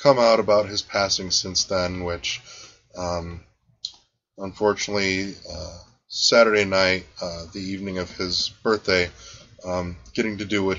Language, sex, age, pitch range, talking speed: English, male, 20-39, 85-100 Hz, 135 wpm